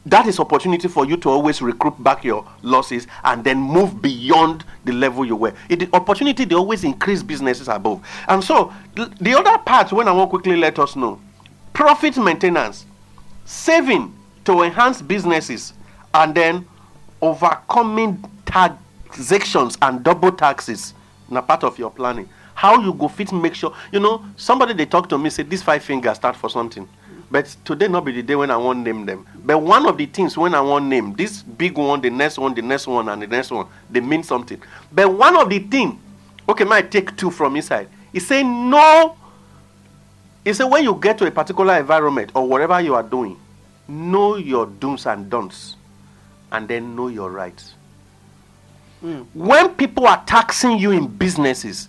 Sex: male